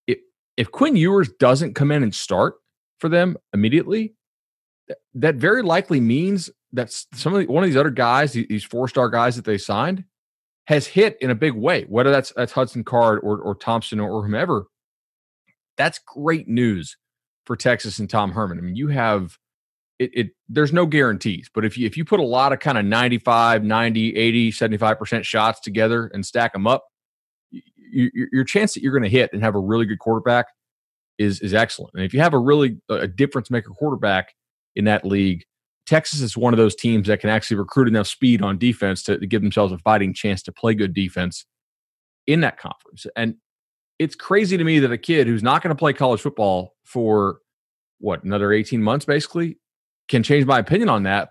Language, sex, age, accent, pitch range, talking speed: English, male, 30-49, American, 110-150 Hz, 195 wpm